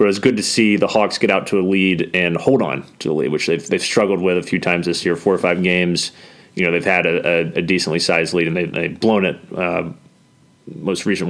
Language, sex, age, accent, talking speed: English, male, 30-49, American, 270 wpm